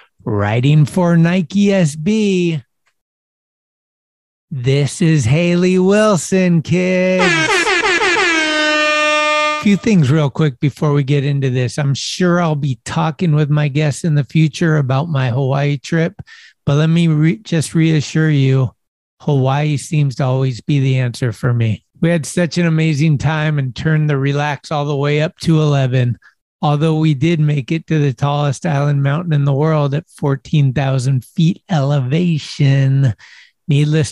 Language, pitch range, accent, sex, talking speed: English, 140-175 Hz, American, male, 150 wpm